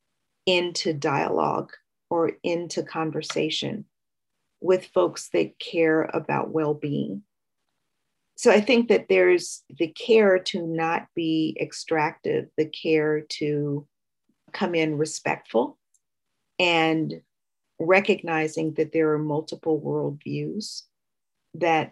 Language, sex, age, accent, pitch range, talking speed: English, female, 40-59, American, 155-175 Hz, 100 wpm